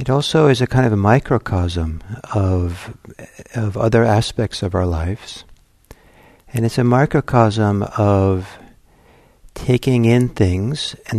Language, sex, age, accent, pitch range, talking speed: English, male, 60-79, American, 95-120 Hz, 130 wpm